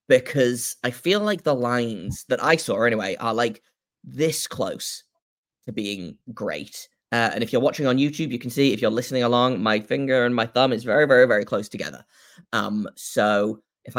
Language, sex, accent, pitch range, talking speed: English, male, British, 110-140 Hz, 195 wpm